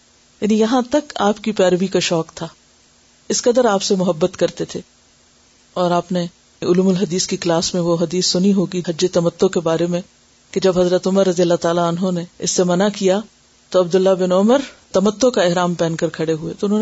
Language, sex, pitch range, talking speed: Urdu, female, 180-230 Hz, 215 wpm